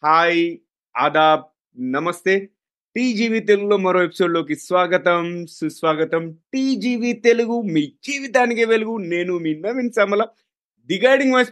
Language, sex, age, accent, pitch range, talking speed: Telugu, male, 30-49, native, 150-205 Hz, 95 wpm